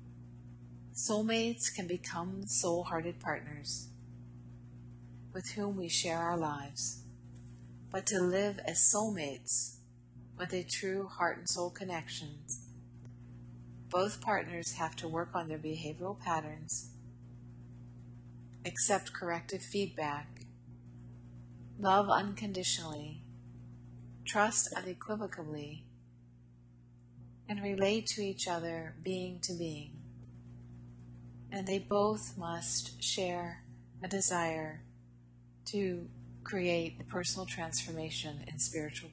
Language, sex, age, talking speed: English, female, 20-39, 90 wpm